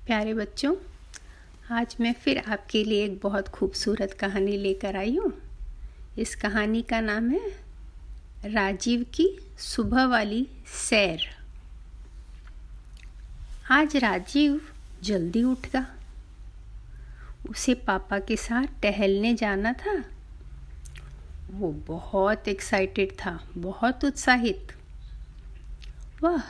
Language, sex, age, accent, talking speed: Hindi, female, 50-69, native, 95 wpm